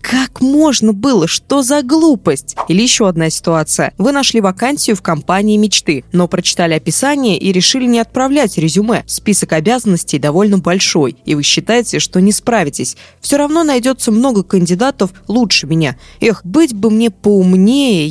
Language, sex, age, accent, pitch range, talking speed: Russian, female, 20-39, native, 165-230 Hz, 150 wpm